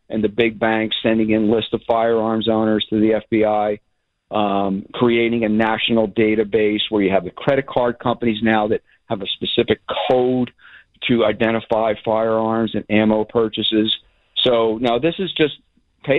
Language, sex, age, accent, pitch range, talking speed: English, male, 50-69, American, 105-120 Hz, 160 wpm